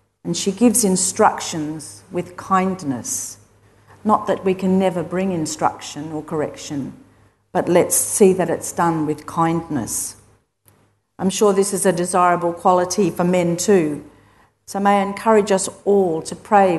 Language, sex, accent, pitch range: English, female, Australian, 155-195 Hz